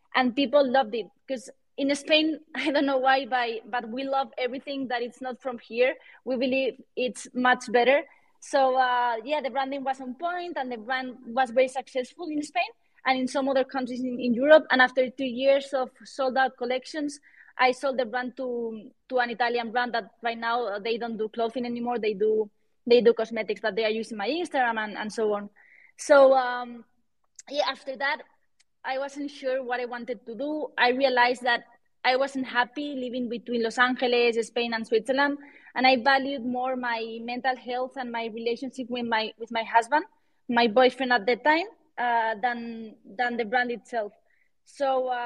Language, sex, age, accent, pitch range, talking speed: English, female, 20-39, Spanish, 240-270 Hz, 190 wpm